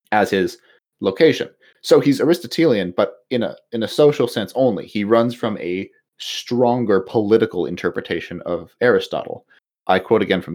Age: 30-49